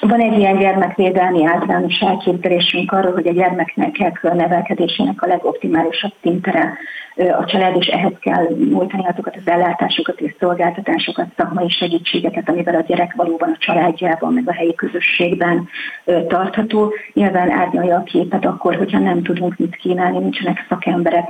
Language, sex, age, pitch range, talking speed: Hungarian, female, 30-49, 170-190 Hz, 140 wpm